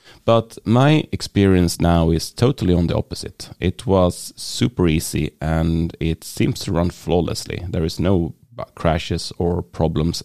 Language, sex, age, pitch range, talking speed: English, male, 30-49, 80-95 Hz, 145 wpm